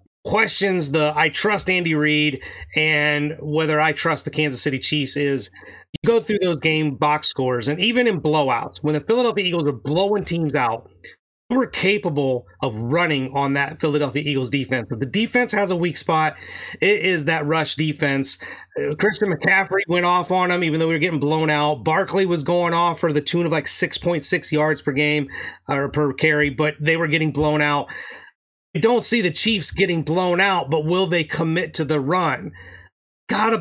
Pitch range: 150-180 Hz